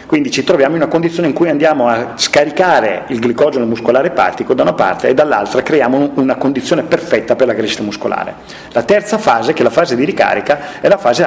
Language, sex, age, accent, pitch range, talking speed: Italian, male, 40-59, native, 120-170 Hz, 215 wpm